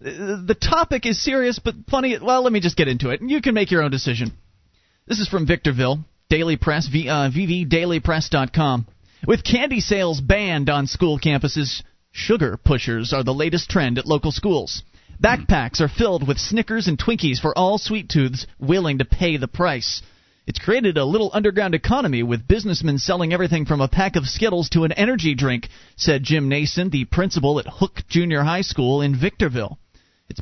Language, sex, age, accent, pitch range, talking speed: English, male, 30-49, American, 130-180 Hz, 180 wpm